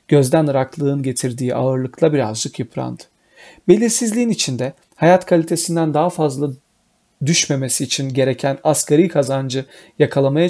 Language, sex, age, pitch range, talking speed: Turkish, male, 40-59, 135-165 Hz, 105 wpm